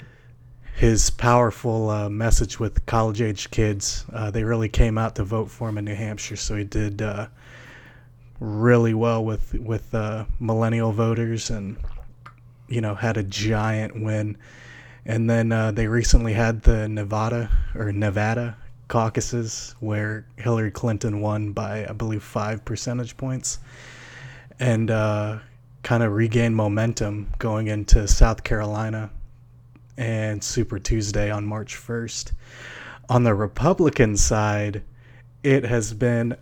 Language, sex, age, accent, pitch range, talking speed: English, male, 20-39, American, 105-120 Hz, 135 wpm